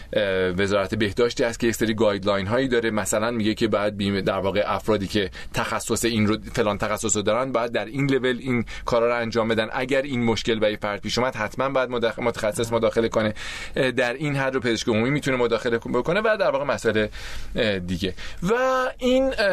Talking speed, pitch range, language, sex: 190 wpm, 115-170 Hz, Persian, male